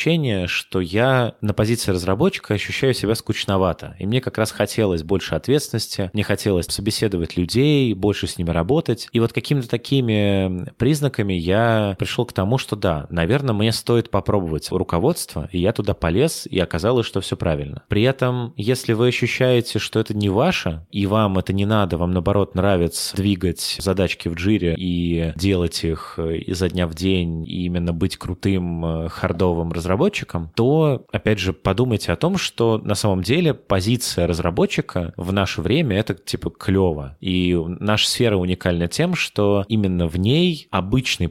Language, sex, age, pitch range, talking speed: Russian, male, 20-39, 90-115 Hz, 160 wpm